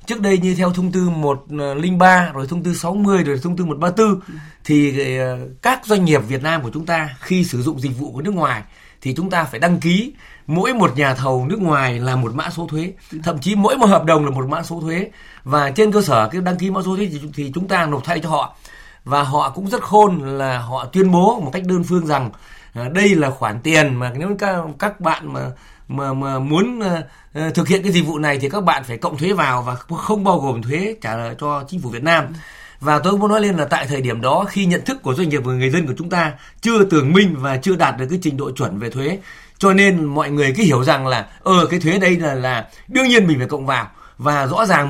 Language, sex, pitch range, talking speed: Vietnamese, male, 140-185 Hz, 255 wpm